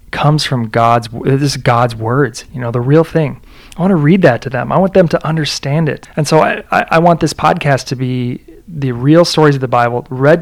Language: English